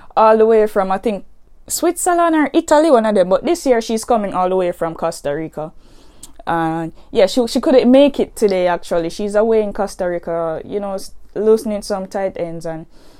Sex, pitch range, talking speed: female, 170-220 Hz, 205 wpm